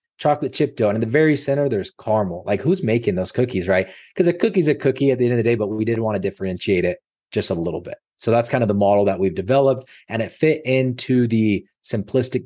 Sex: male